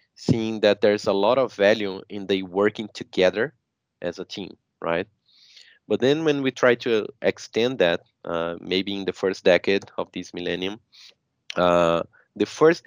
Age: 20-39